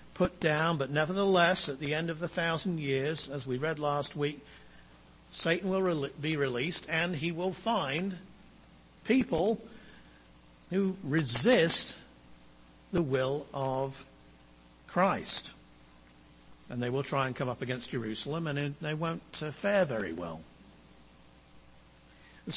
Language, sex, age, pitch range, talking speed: English, male, 60-79, 135-185 Hz, 125 wpm